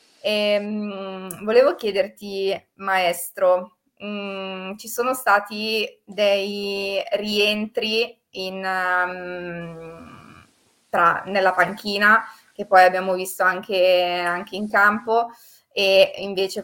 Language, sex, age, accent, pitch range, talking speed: Italian, female, 20-39, native, 190-210 Hz, 90 wpm